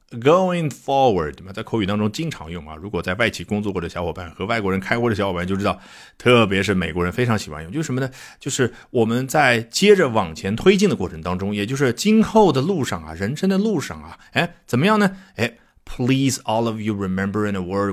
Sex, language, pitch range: male, Chinese, 90-135 Hz